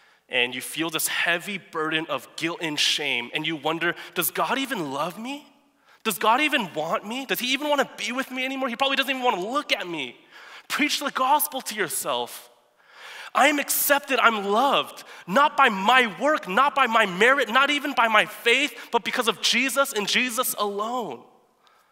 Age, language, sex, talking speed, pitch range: 20-39, English, male, 190 wpm, 195-270 Hz